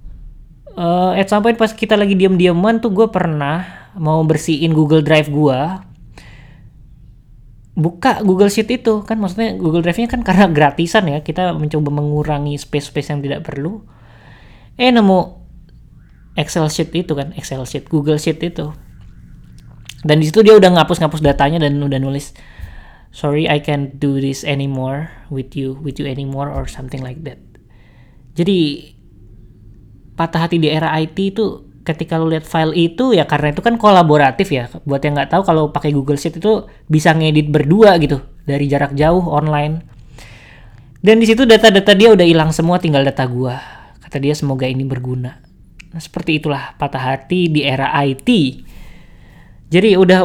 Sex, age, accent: female, 20-39, Indonesian